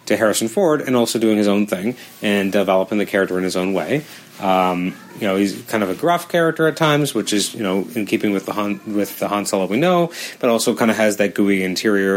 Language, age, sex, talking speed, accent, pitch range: English, 30-49, male, 245 wpm, American, 95-110 Hz